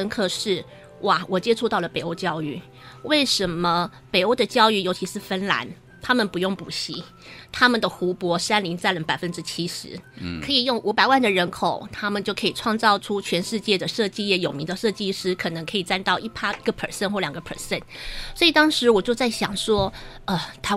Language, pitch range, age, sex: Chinese, 175-215 Hz, 30-49, female